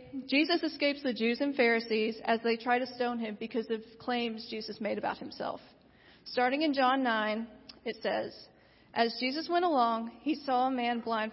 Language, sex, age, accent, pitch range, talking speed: English, female, 40-59, American, 230-265 Hz, 180 wpm